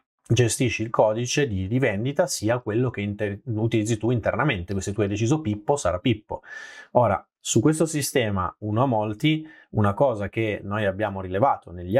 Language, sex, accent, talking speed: Italian, male, native, 165 wpm